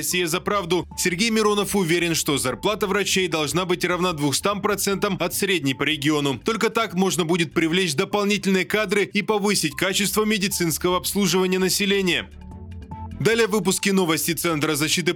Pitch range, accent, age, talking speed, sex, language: 165-205 Hz, native, 20-39, 145 wpm, male, Russian